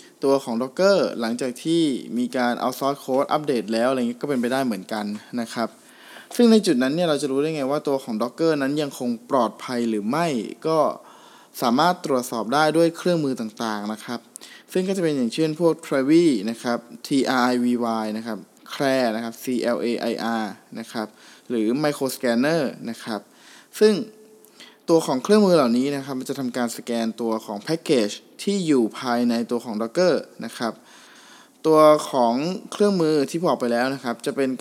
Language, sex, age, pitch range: Thai, male, 20-39, 120-160 Hz